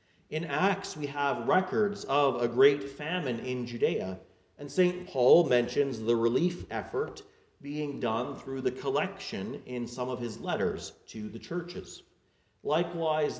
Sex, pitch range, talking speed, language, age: male, 125-170 Hz, 145 wpm, English, 40-59